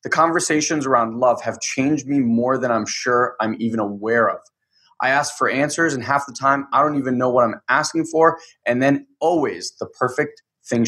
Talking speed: 205 wpm